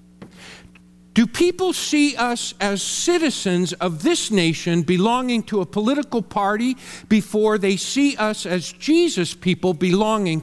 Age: 50-69